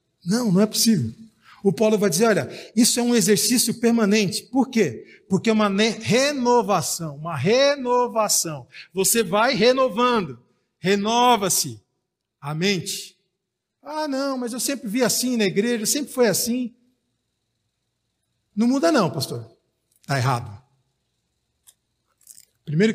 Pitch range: 170-230 Hz